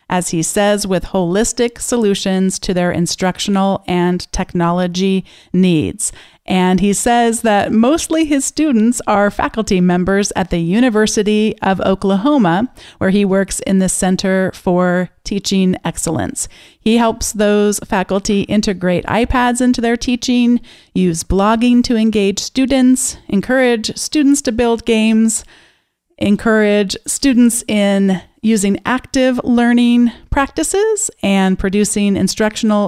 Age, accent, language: 40-59, American, English